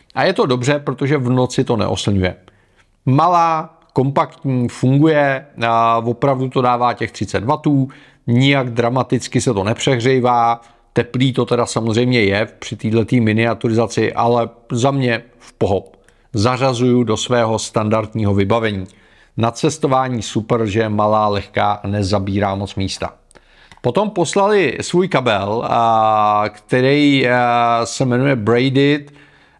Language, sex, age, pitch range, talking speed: Czech, male, 40-59, 115-140 Hz, 120 wpm